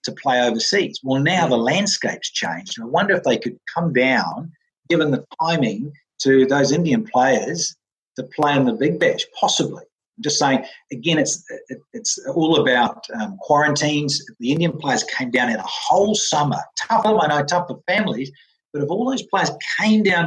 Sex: male